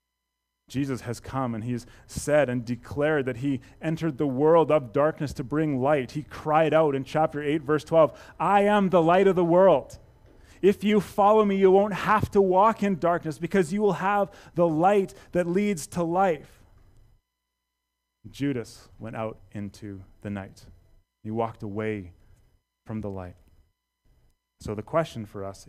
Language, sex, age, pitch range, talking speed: English, male, 30-49, 105-145 Hz, 165 wpm